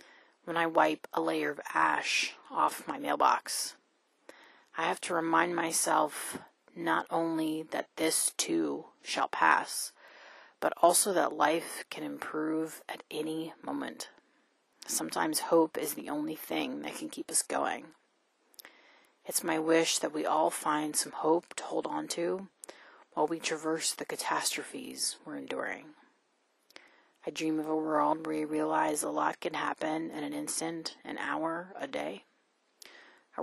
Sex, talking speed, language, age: female, 145 wpm, English, 30-49